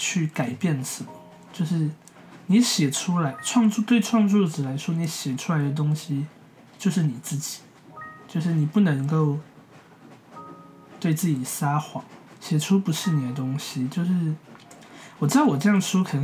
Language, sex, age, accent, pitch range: Chinese, male, 20-39, native, 145-180 Hz